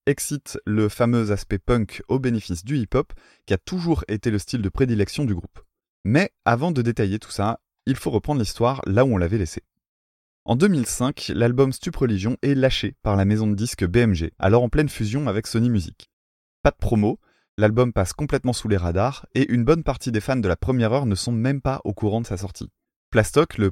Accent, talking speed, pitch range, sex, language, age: French, 210 wpm, 100-135 Hz, male, French, 20-39